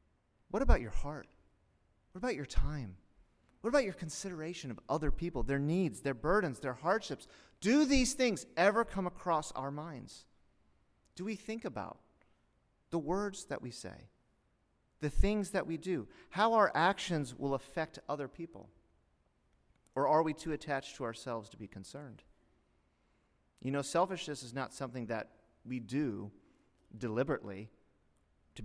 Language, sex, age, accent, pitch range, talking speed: English, male, 30-49, American, 110-165 Hz, 150 wpm